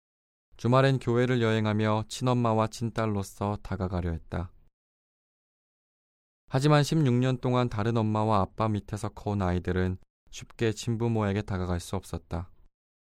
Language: Korean